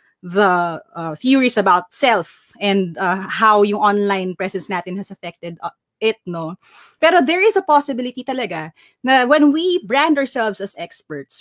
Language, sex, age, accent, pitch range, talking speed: Filipino, female, 20-39, native, 190-280 Hz, 155 wpm